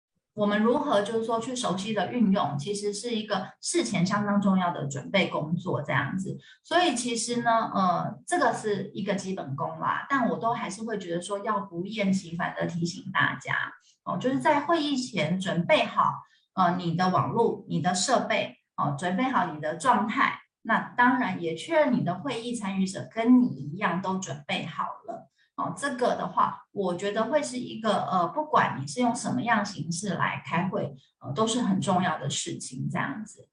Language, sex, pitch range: Chinese, female, 180-235 Hz